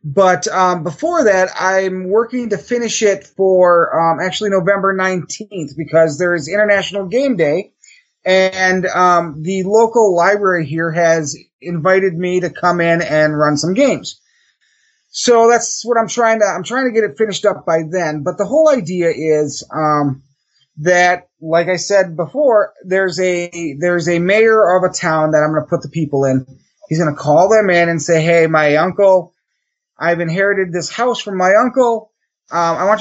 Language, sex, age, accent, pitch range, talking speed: English, male, 30-49, American, 160-195 Hz, 180 wpm